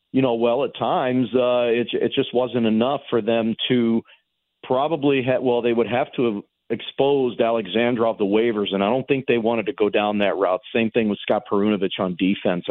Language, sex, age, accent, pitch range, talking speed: English, male, 40-59, American, 105-125 Hz, 210 wpm